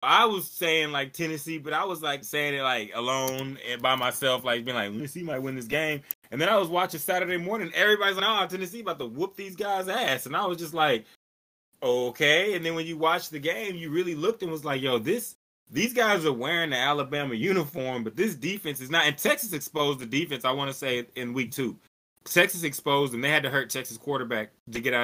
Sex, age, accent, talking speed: male, 20-39, American, 235 wpm